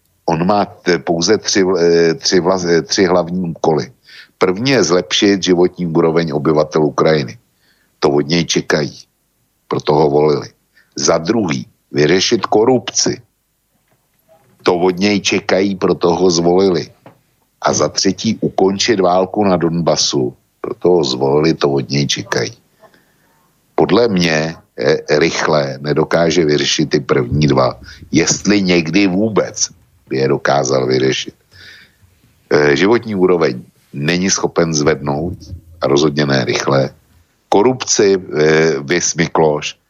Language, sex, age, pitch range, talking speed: Slovak, male, 60-79, 75-95 Hz, 115 wpm